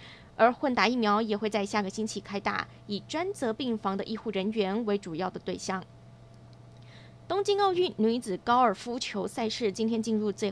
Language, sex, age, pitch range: Chinese, female, 20-39, 205-250 Hz